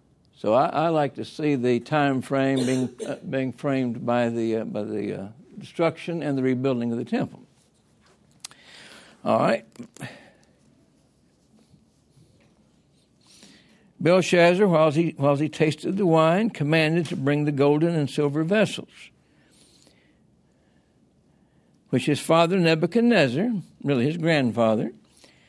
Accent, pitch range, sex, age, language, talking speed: American, 140-180 Hz, male, 60-79, English, 120 wpm